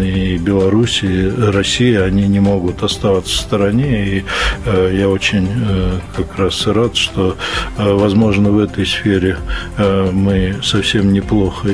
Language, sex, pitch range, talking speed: Russian, male, 95-115 Hz, 125 wpm